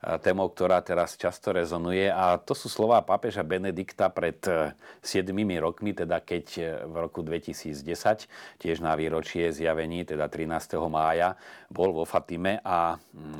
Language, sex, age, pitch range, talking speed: Slovak, male, 40-59, 85-115 Hz, 135 wpm